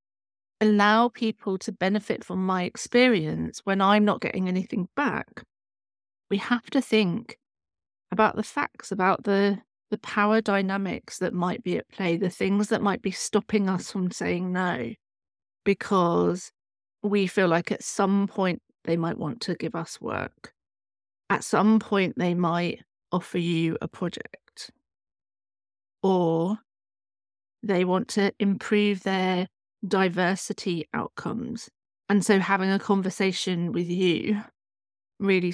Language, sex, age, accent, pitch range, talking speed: English, female, 40-59, British, 175-220 Hz, 135 wpm